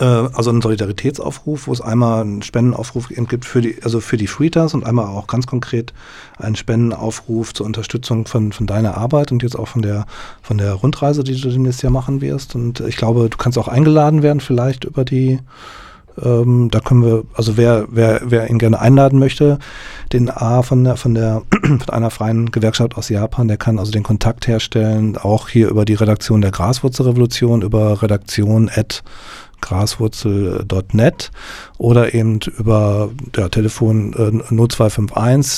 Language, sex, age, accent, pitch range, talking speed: German, male, 40-59, German, 110-130 Hz, 165 wpm